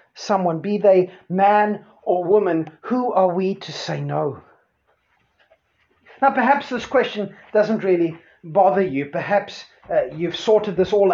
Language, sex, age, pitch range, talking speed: English, male, 30-49, 180-230 Hz, 140 wpm